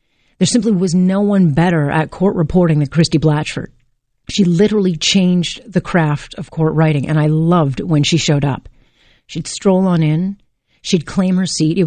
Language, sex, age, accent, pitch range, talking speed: English, female, 40-59, American, 140-180 Hz, 180 wpm